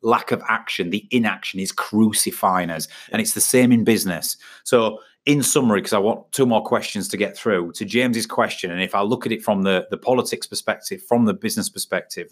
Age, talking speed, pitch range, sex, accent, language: 30-49, 215 wpm, 95-125 Hz, male, British, English